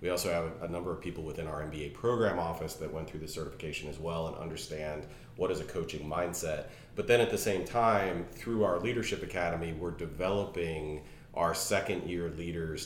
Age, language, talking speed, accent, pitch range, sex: 30-49, English, 195 wpm, American, 80-100 Hz, male